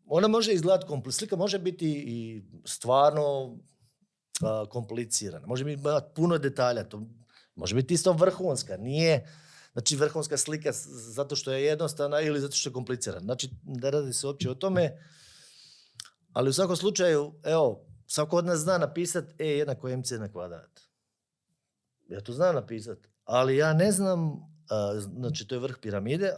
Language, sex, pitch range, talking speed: Croatian, male, 120-170 Hz, 155 wpm